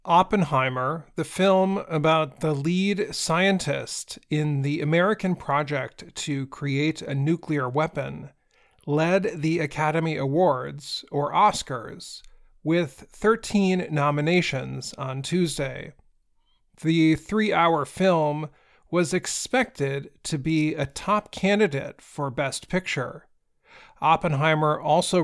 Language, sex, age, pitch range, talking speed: English, male, 40-59, 145-180 Hz, 100 wpm